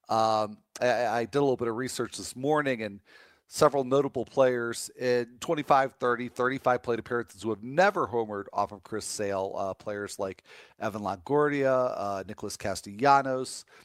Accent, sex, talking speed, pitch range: American, male, 160 wpm, 100-130 Hz